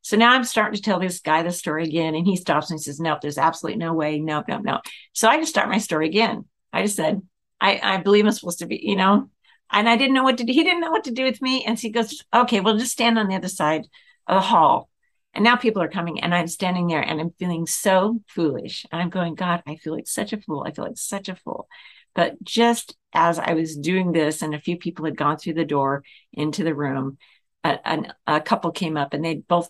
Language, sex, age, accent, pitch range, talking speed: English, female, 50-69, American, 155-210 Hz, 265 wpm